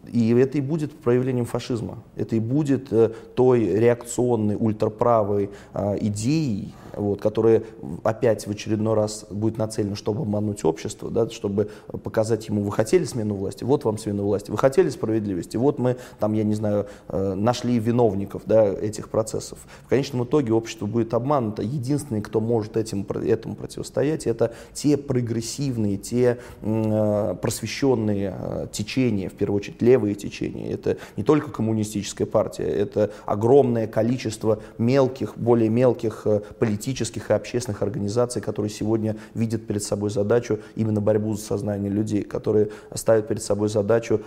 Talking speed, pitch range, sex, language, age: 135 wpm, 105-120 Hz, male, Russian, 20-39